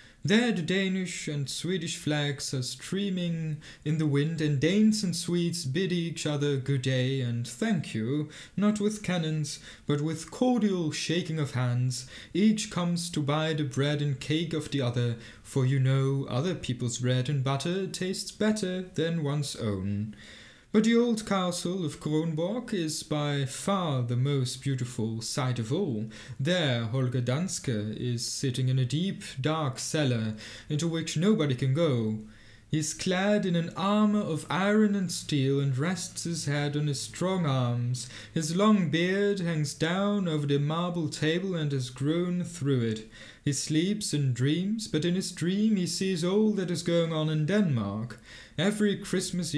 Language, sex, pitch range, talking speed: English, male, 130-180 Hz, 165 wpm